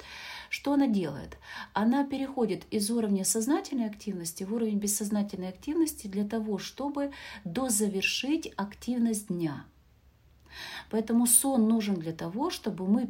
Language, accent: Russian, native